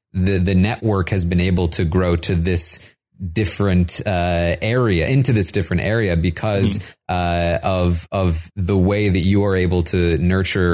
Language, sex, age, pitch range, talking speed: English, male, 20-39, 85-100 Hz, 160 wpm